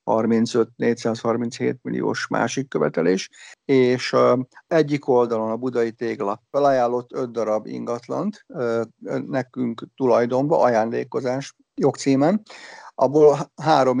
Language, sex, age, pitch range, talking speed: Hungarian, male, 60-79, 115-140 Hz, 95 wpm